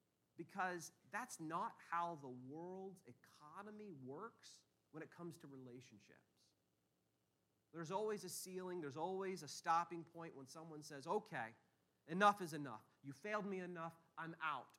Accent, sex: American, male